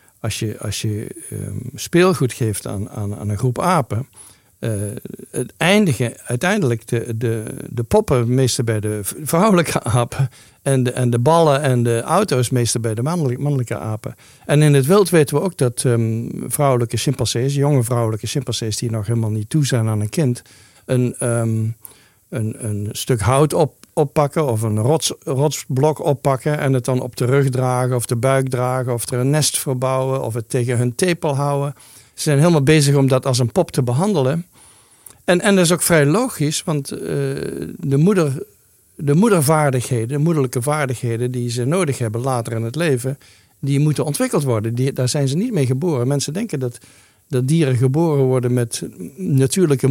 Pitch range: 120-150 Hz